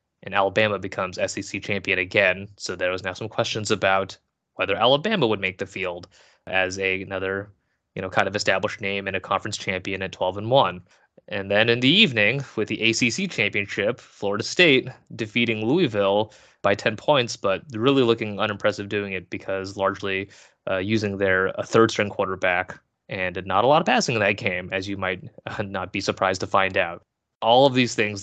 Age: 20-39